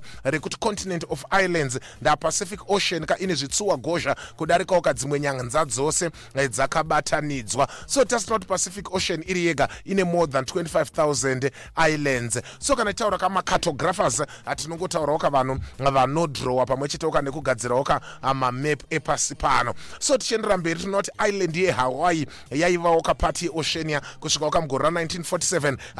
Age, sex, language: 30-49, male, English